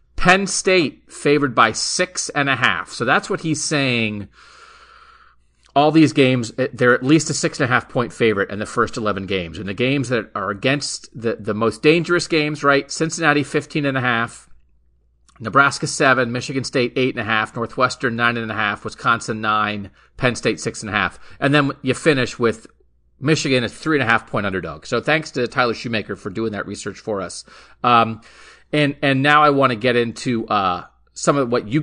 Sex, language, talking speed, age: male, English, 200 wpm, 40-59